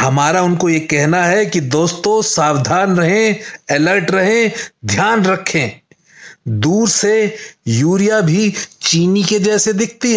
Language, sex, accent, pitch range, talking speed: Hindi, male, native, 170-225 Hz, 125 wpm